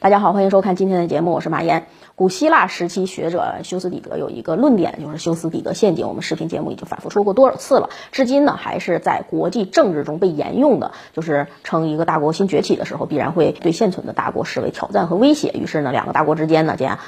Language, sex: Chinese, female